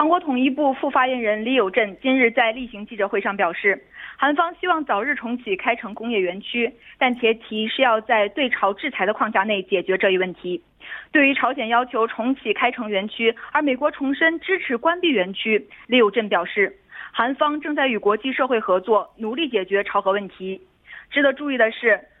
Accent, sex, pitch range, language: Chinese, female, 210-275 Hz, Korean